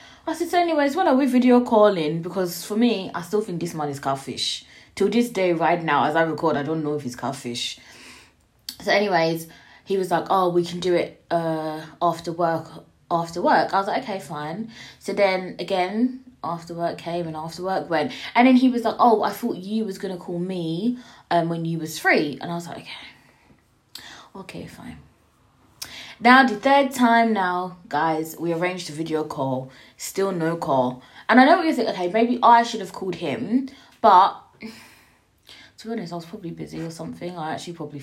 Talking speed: 200 wpm